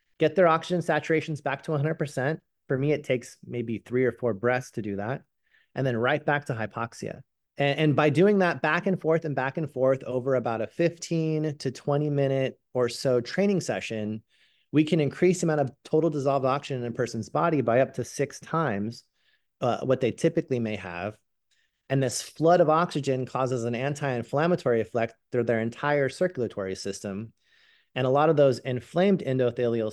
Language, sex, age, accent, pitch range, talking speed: English, male, 30-49, American, 120-155 Hz, 185 wpm